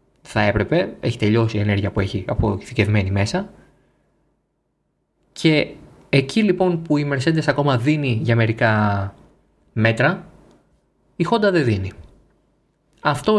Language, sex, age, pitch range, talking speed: Greek, male, 20-39, 110-165 Hz, 115 wpm